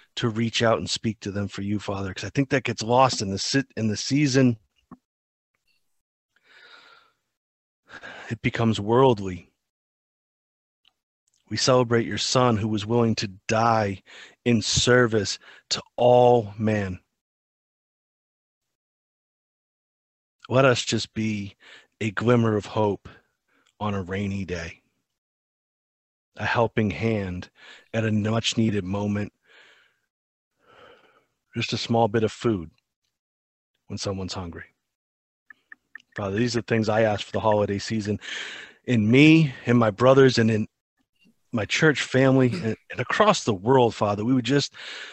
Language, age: English, 40-59